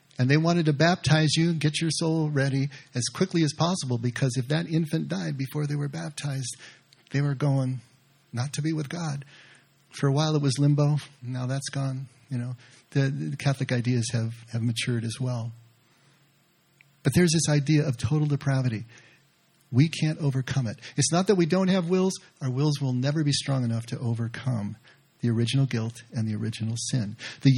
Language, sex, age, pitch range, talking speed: English, male, 40-59, 125-155 Hz, 190 wpm